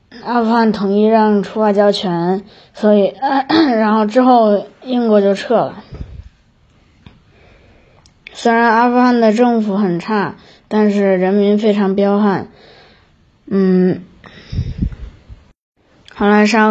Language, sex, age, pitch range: Chinese, female, 20-39, 190-215 Hz